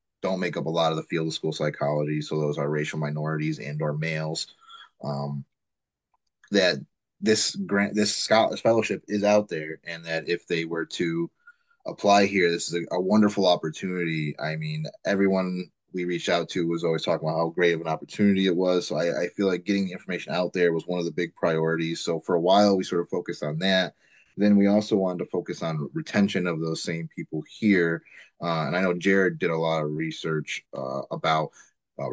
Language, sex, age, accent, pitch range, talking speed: English, male, 30-49, American, 80-95 Hz, 210 wpm